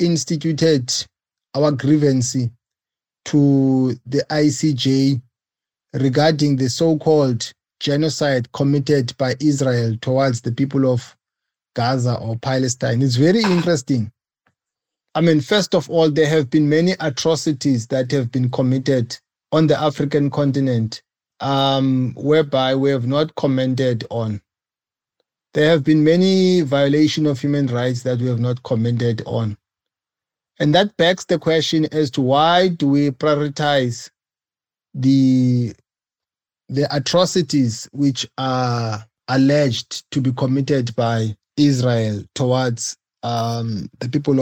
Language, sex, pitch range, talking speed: English, male, 125-160 Hz, 120 wpm